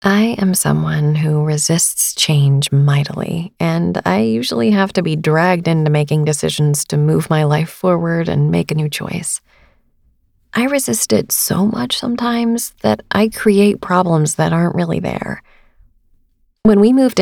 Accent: American